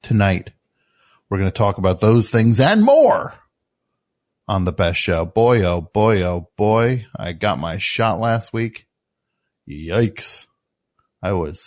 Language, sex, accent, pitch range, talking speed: English, male, American, 95-115 Hz, 145 wpm